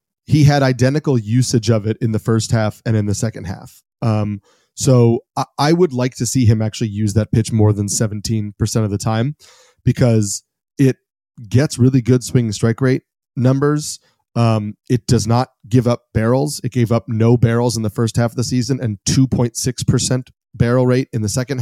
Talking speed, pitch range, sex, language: 190 wpm, 115-135 Hz, male, English